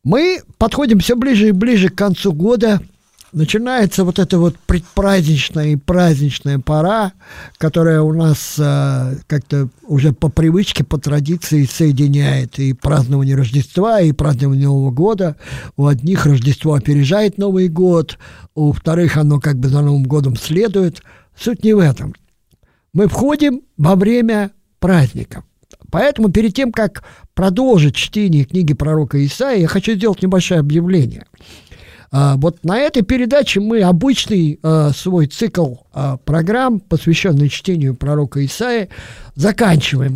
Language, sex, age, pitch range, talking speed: Russian, male, 50-69, 145-200 Hz, 130 wpm